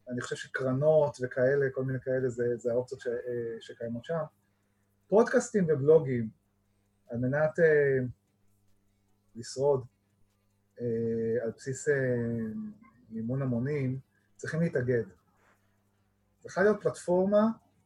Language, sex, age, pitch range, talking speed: Hebrew, male, 30-49, 120-180 Hz, 95 wpm